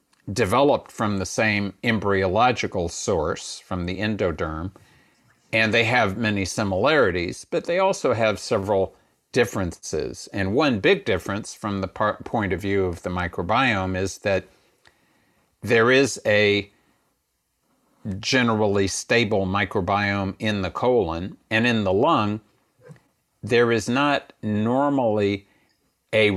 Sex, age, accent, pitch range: male, 50-69, American, 95-110 Hz